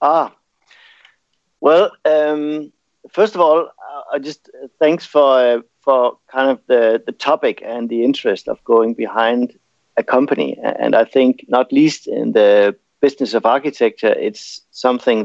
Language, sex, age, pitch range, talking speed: English, male, 50-69, 115-150 Hz, 155 wpm